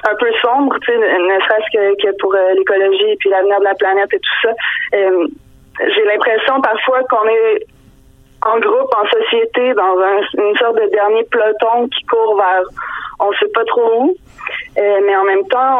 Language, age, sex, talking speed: French, 20-39, female, 190 wpm